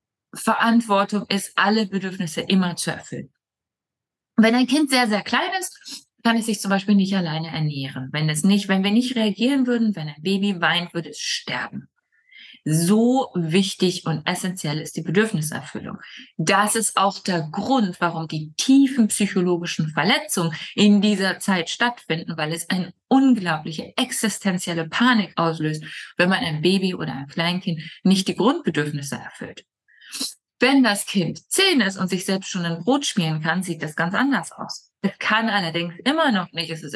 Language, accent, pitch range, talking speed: German, German, 170-215 Hz, 165 wpm